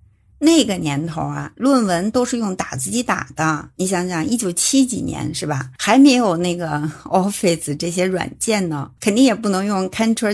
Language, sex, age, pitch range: Chinese, female, 50-69, 160-215 Hz